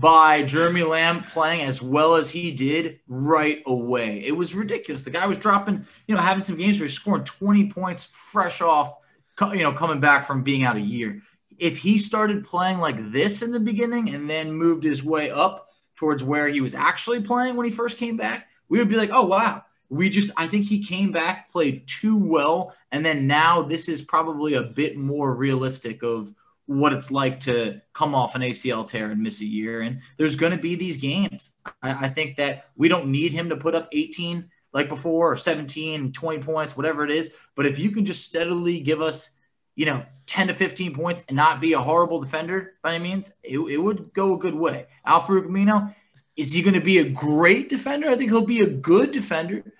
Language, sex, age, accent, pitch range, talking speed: English, male, 20-39, American, 145-190 Hz, 215 wpm